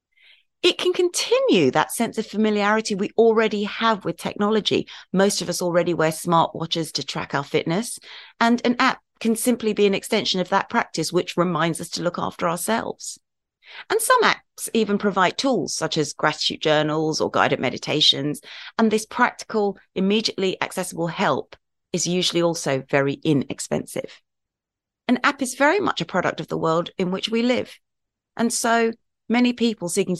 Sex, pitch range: female, 165-225 Hz